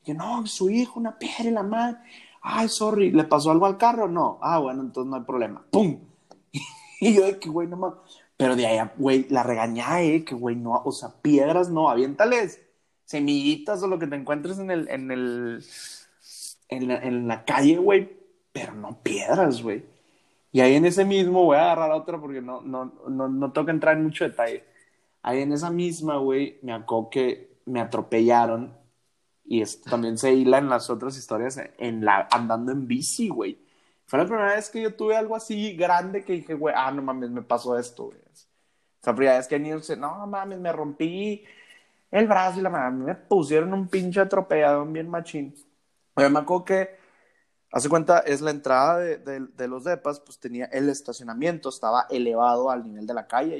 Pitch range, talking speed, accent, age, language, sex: 130-195 Hz, 195 wpm, Mexican, 30-49, Spanish, male